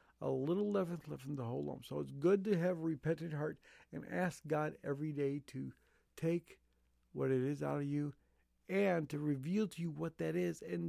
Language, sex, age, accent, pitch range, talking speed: English, male, 50-69, American, 125-175 Hz, 210 wpm